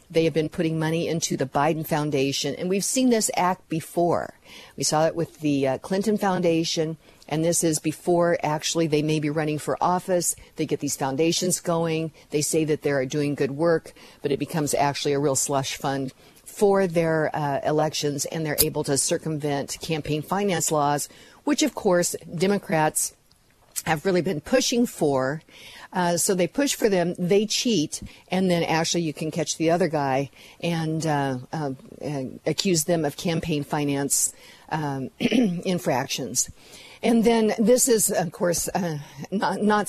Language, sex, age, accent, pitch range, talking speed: English, female, 50-69, American, 150-180 Hz, 170 wpm